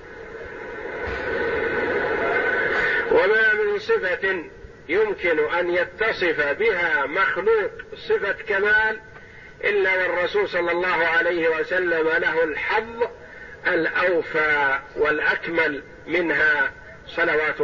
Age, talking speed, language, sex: 50-69, 75 wpm, Arabic, male